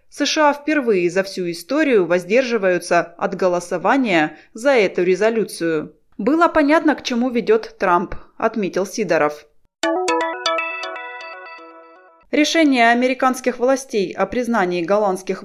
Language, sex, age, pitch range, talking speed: Russian, female, 20-39, 180-260 Hz, 95 wpm